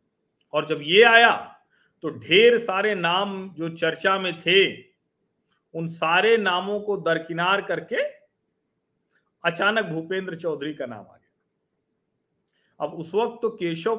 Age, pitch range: 40-59, 170-230 Hz